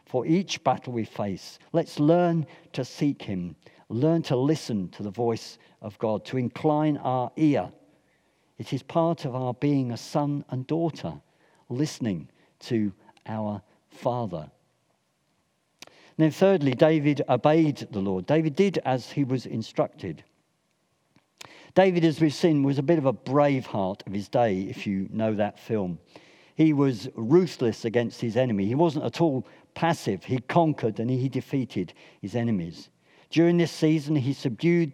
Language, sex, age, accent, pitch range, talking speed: English, male, 50-69, British, 115-155 Hz, 155 wpm